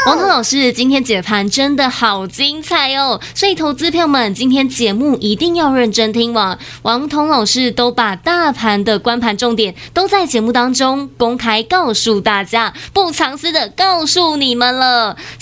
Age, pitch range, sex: 20-39, 225-315 Hz, female